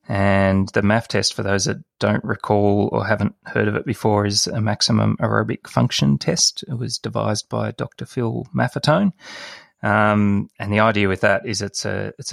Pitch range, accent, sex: 100-115 Hz, Australian, male